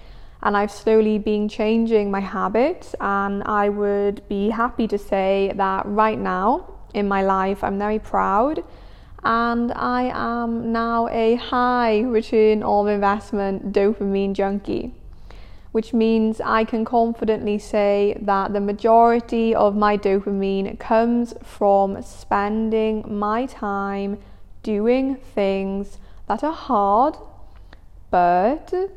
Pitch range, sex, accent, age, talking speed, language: 195-230 Hz, female, British, 20-39, 120 wpm, English